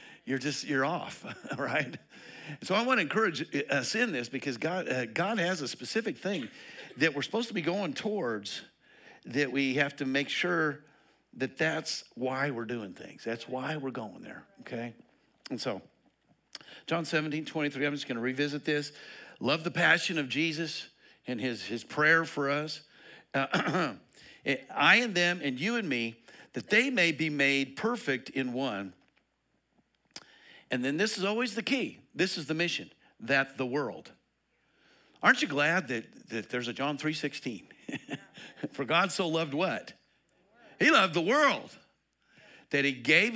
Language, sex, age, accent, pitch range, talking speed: English, male, 50-69, American, 130-175 Hz, 165 wpm